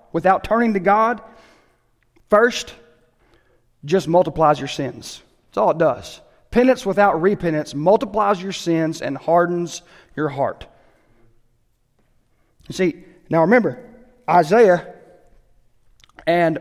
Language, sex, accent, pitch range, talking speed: English, male, American, 155-210 Hz, 105 wpm